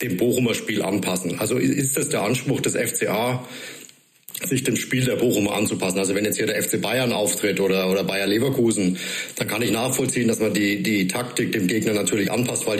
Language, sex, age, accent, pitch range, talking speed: German, male, 50-69, German, 100-125 Hz, 200 wpm